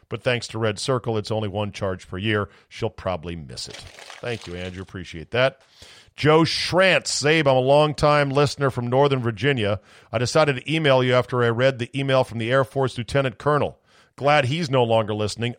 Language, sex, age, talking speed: English, male, 40-59, 195 wpm